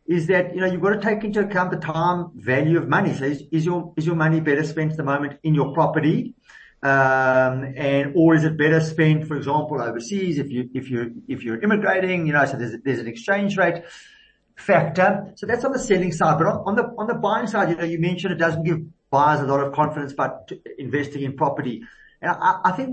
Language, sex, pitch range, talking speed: English, male, 140-180 Hz, 240 wpm